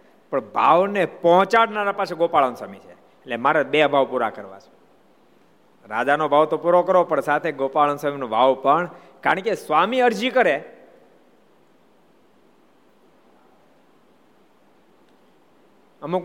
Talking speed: 120 wpm